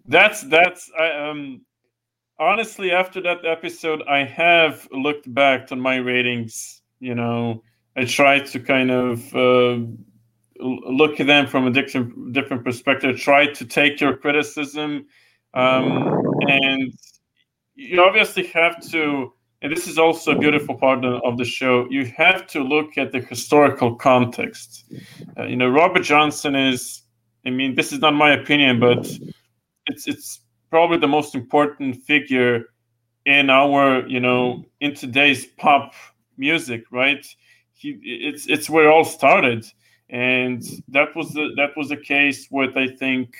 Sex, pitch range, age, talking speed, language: male, 125-150 Hz, 20-39, 150 wpm, English